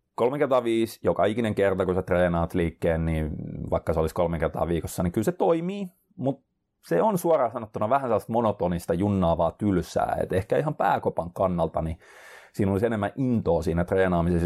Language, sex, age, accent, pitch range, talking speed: Finnish, male, 30-49, native, 90-115 Hz, 170 wpm